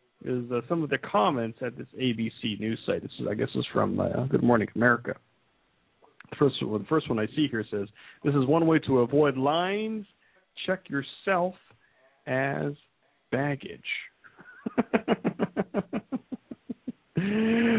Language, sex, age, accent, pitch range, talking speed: English, male, 40-59, American, 115-165 Hz, 145 wpm